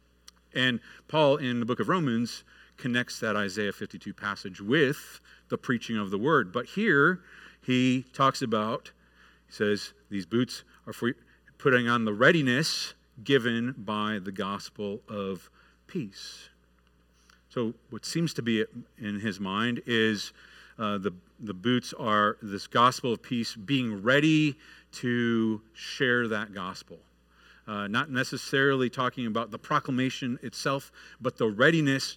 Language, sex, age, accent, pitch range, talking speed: English, male, 40-59, American, 100-130 Hz, 140 wpm